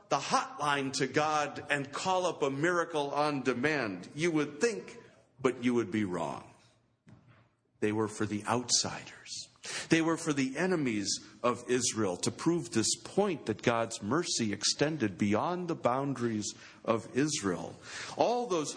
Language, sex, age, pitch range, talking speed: English, male, 50-69, 110-145 Hz, 145 wpm